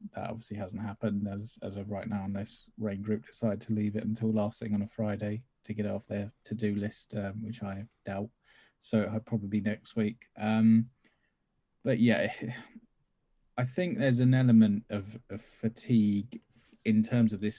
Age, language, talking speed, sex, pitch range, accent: 20-39, English, 185 wpm, male, 100-110 Hz, British